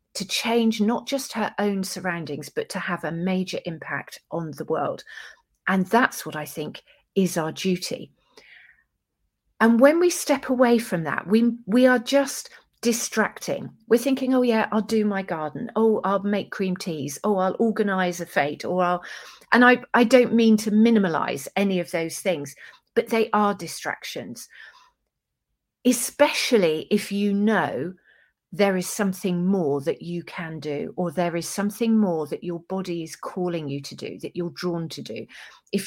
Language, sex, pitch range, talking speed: English, female, 175-230 Hz, 170 wpm